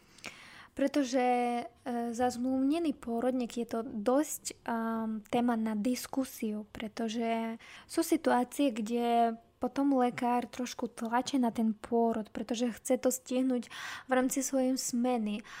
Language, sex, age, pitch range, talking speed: Slovak, female, 20-39, 225-255 Hz, 115 wpm